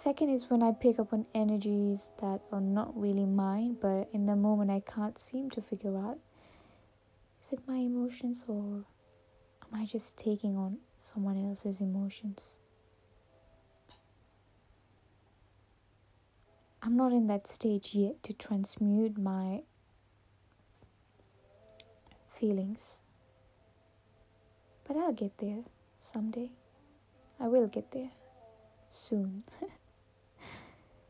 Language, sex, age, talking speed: English, female, 20-39, 110 wpm